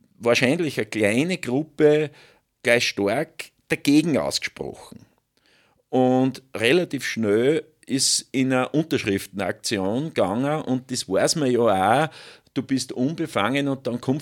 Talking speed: 120 wpm